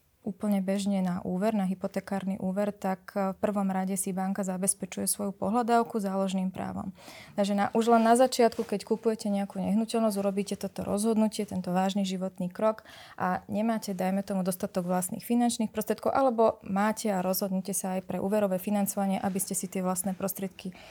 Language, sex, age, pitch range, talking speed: Slovak, female, 20-39, 190-220 Hz, 165 wpm